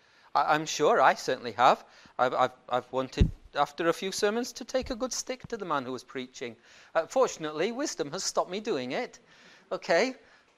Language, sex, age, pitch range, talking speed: English, male, 40-59, 165-235 Hz, 180 wpm